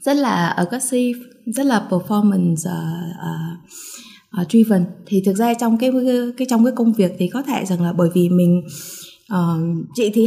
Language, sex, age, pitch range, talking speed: Vietnamese, female, 20-39, 185-255 Hz, 180 wpm